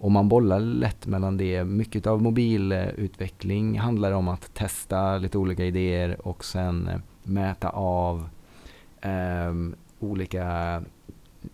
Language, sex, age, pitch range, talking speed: Swedish, male, 30-49, 85-100 Hz, 110 wpm